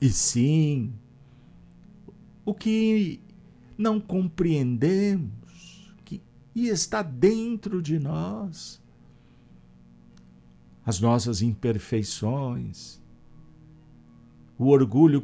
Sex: male